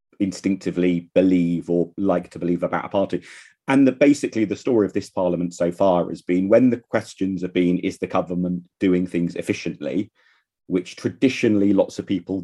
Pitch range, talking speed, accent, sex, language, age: 85-100 Hz, 175 wpm, British, male, English, 40-59